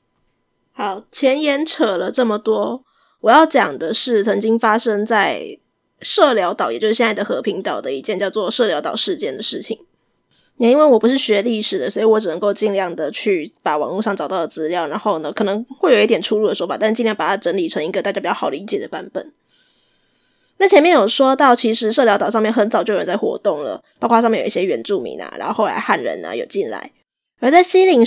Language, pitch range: Chinese, 215-280 Hz